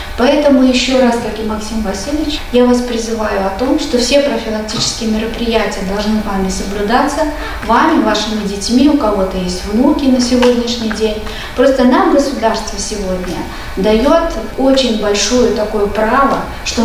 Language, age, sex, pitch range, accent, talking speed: Russian, 20-39, female, 215-270 Hz, native, 140 wpm